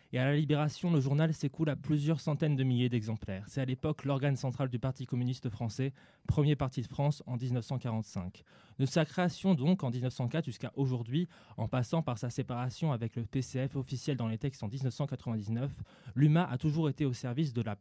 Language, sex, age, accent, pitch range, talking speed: French, male, 20-39, French, 125-150 Hz, 195 wpm